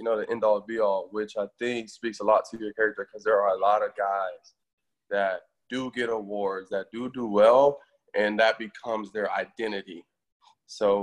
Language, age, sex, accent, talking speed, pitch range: English, 20-39, male, American, 190 wpm, 110-155 Hz